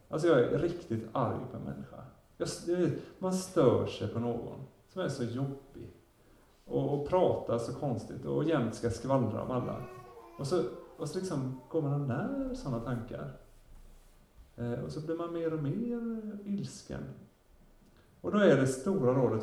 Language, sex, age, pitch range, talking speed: Swedish, male, 30-49, 115-160 Hz, 160 wpm